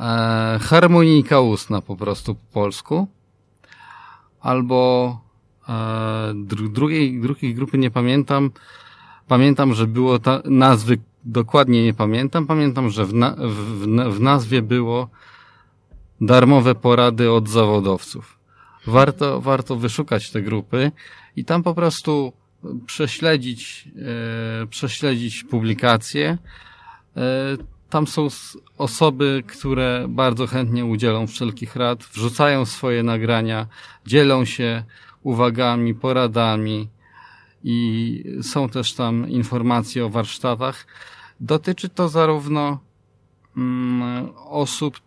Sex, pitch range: male, 115-135 Hz